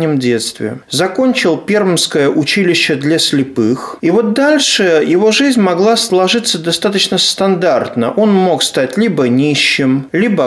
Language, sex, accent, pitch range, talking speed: Russian, male, native, 145-225 Hz, 120 wpm